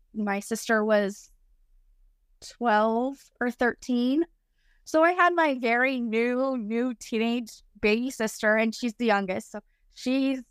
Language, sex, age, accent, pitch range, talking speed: English, female, 20-39, American, 210-245 Hz, 125 wpm